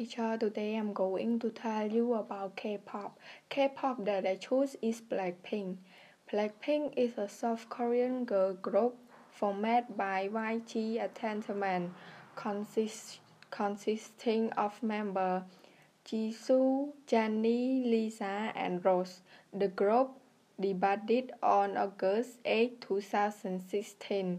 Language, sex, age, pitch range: English, female, 10-29, 195-235 Hz